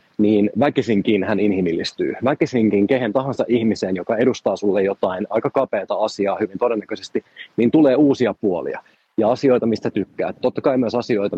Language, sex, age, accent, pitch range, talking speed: Finnish, male, 30-49, native, 100-125 Hz, 155 wpm